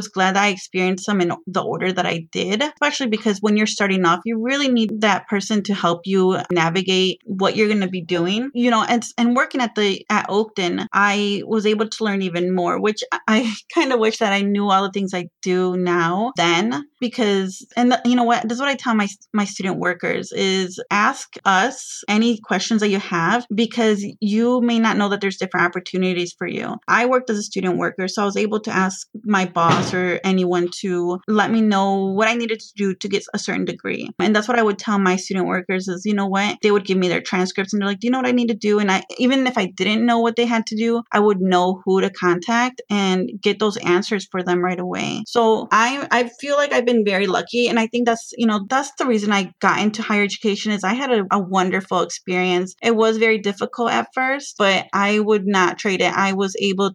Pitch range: 190-230 Hz